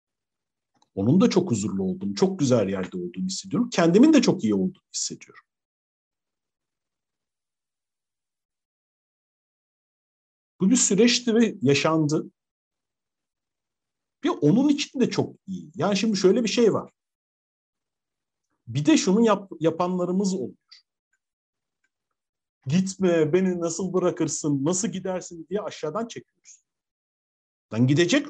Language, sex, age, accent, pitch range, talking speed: Turkish, male, 50-69, native, 140-200 Hz, 105 wpm